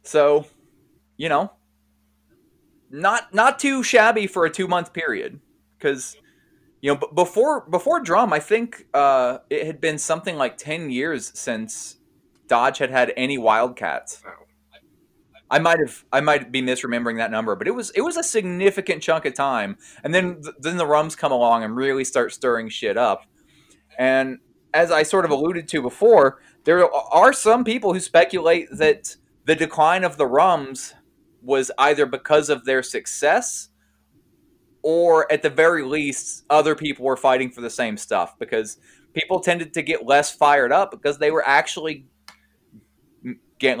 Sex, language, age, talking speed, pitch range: male, English, 20-39, 165 wpm, 125-170 Hz